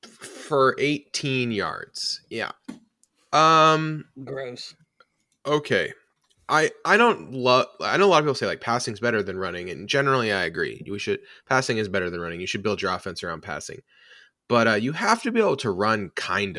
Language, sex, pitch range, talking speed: English, male, 105-155 Hz, 185 wpm